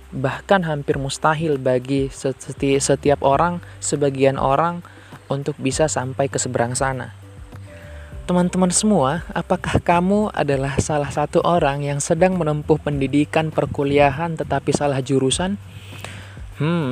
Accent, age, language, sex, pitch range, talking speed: native, 20-39, Indonesian, male, 130-160 Hz, 115 wpm